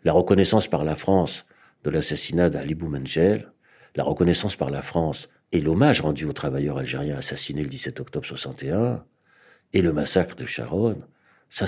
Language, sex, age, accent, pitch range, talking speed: French, male, 60-79, French, 100-155 Hz, 160 wpm